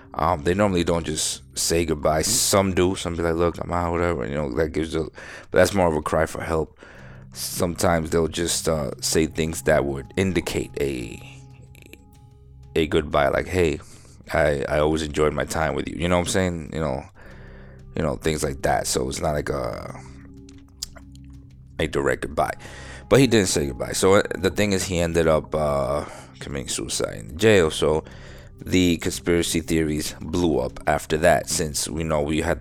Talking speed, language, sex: 190 wpm, English, male